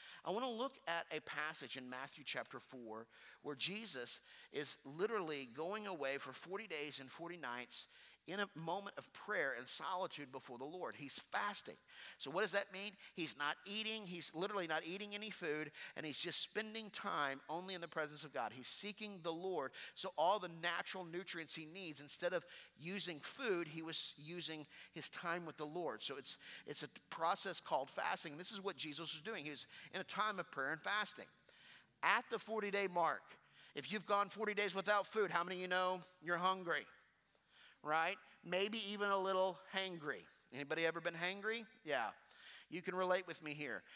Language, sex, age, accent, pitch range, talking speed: English, male, 50-69, American, 155-200 Hz, 190 wpm